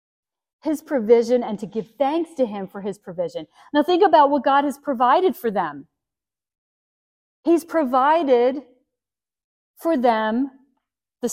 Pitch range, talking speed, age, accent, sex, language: 185-275 Hz, 130 wpm, 40-59, American, female, English